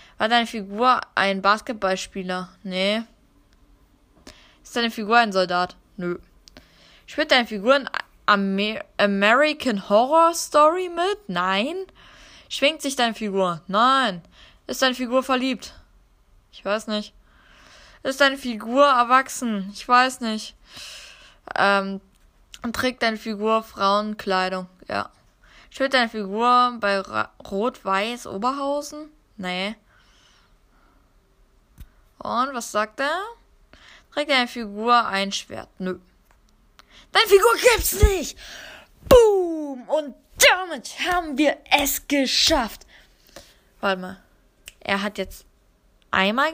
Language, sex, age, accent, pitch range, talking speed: German, female, 10-29, German, 200-295 Hz, 105 wpm